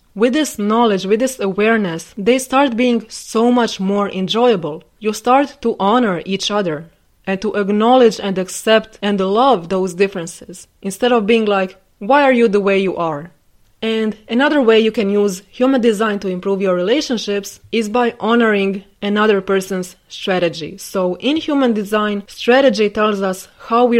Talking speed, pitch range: 165 wpm, 190-230 Hz